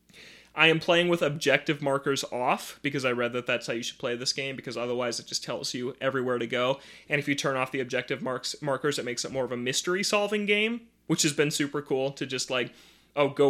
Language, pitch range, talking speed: English, 120-145 Hz, 245 wpm